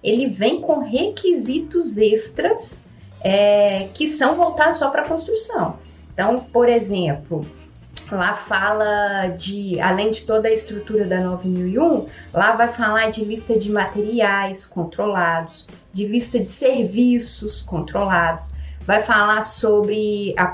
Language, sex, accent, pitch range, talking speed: Portuguese, female, Brazilian, 190-260 Hz, 125 wpm